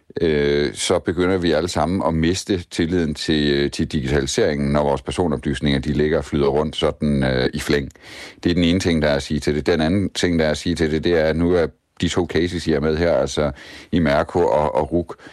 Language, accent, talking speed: Danish, native, 240 wpm